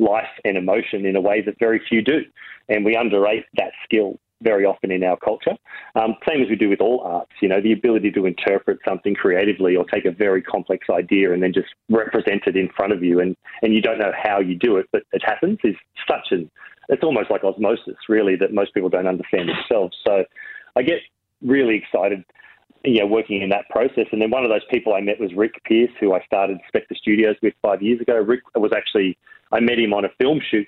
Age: 30-49